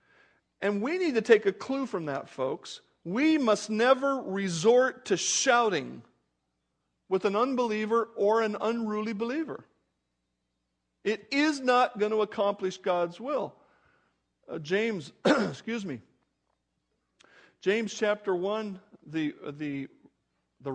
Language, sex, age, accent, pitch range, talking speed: English, male, 50-69, American, 165-225 Hz, 115 wpm